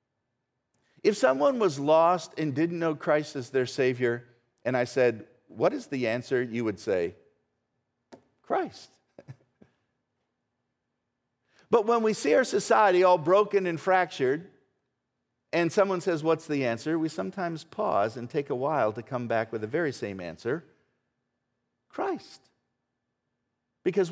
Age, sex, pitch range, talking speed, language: 50-69, male, 115-165 Hz, 135 wpm, English